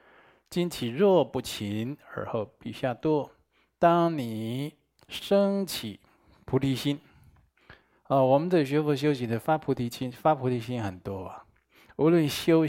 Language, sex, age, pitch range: Chinese, male, 20-39, 115-150 Hz